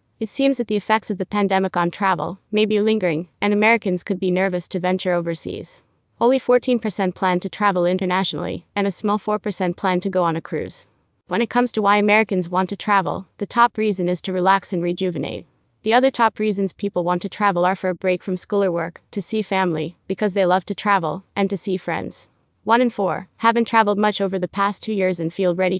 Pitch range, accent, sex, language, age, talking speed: 180-215 Hz, American, female, English, 30-49, 225 wpm